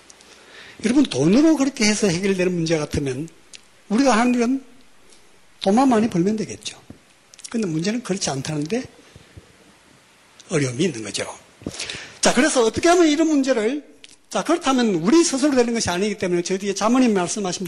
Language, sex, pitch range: Korean, male, 185-255 Hz